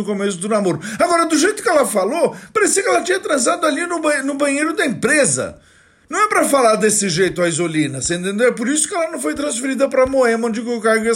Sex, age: male, 50-69